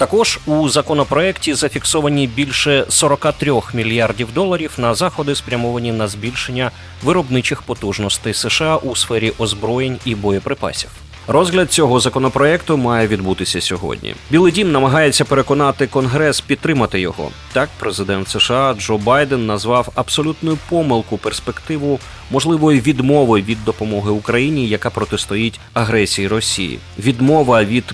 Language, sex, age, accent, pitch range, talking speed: Ukrainian, male, 30-49, native, 105-140 Hz, 115 wpm